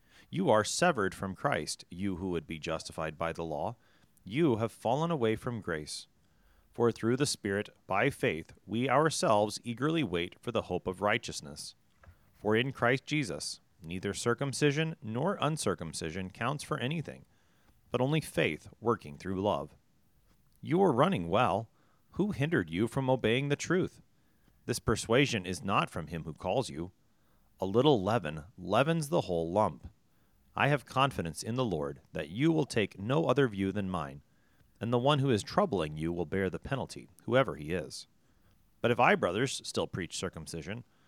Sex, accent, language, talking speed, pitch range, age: male, American, English, 165 wpm, 90-140 Hz, 30-49